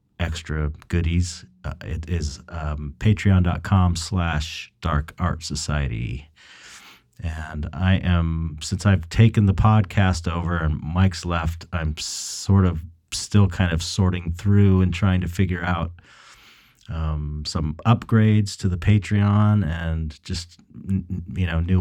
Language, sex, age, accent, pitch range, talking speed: English, male, 30-49, American, 75-95 Hz, 125 wpm